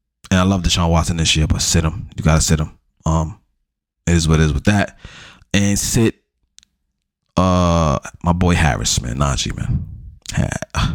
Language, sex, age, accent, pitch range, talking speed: English, male, 20-39, American, 80-100 Hz, 180 wpm